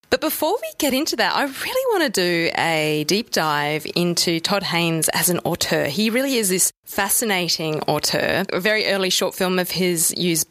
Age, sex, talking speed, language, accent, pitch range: 20-39, female, 195 wpm, English, Australian, 165-215 Hz